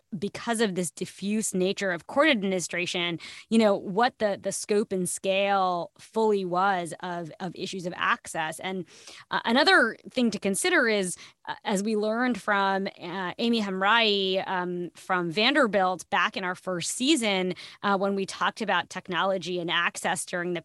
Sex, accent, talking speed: female, American, 165 wpm